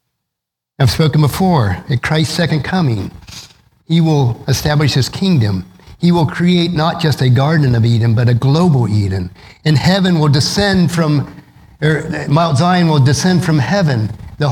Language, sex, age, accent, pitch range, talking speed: English, male, 50-69, American, 125-170 Hz, 155 wpm